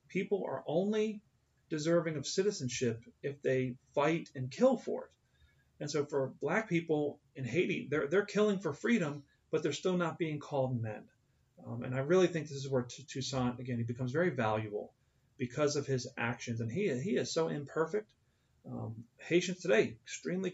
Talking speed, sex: 180 wpm, male